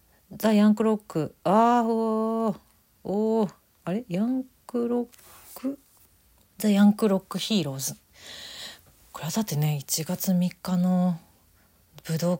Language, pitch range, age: Japanese, 150-220 Hz, 40-59